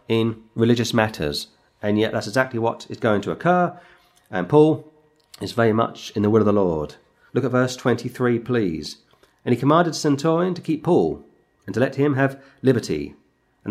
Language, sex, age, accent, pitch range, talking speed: English, male, 40-59, British, 115-145 Hz, 185 wpm